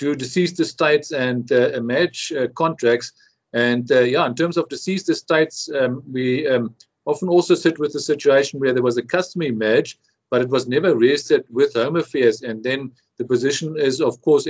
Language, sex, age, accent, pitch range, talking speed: English, male, 50-69, German, 125-170 Hz, 190 wpm